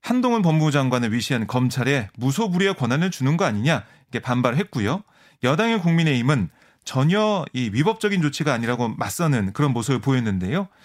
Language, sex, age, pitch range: Korean, male, 30-49, 130-190 Hz